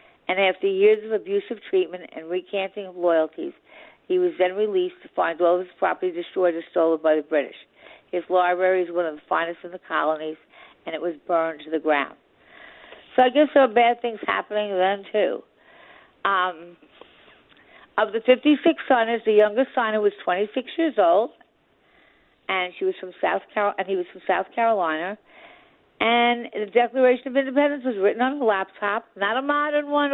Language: English